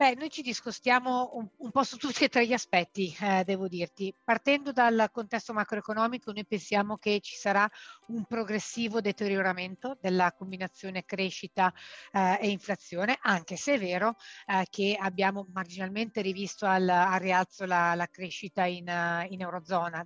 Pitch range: 185-210 Hz